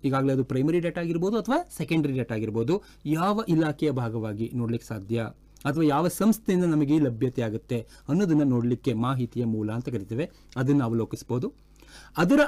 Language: Kannada